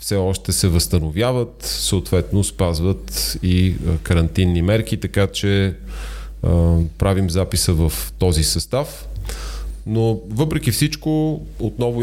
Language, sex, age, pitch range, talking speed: Bulgarian, male, 30-49, 85-110 Hz, 100 wpm